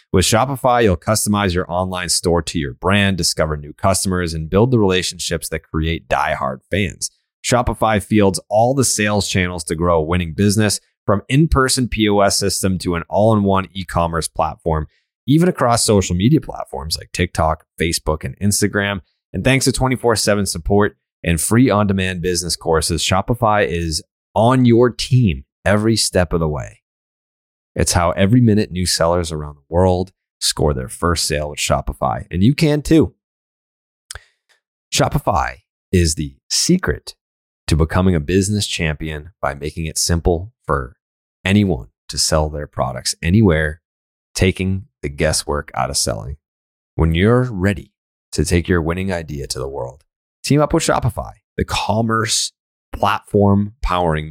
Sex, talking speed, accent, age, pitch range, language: male, 150 wpm, American, 30-49, 80-105 Hz, English